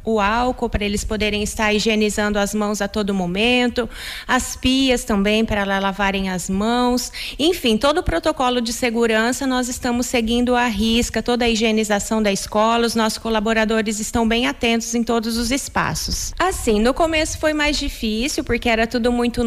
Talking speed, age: 170 wpm, 30-49